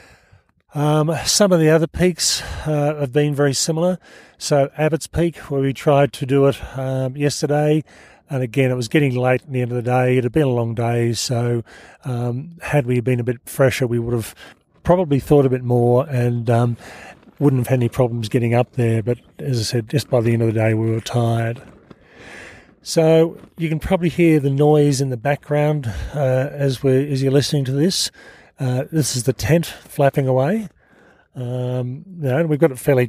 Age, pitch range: 40-59, 120-145 Hz